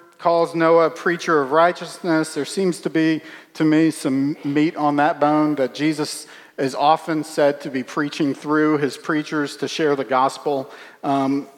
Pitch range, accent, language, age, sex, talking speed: 150-185 Hz, American, English, 40-59, male, 170 wpm